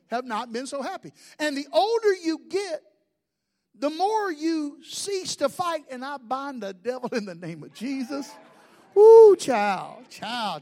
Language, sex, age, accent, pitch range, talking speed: English, male, 50-69, American, 195-310 Hz, 165 wpm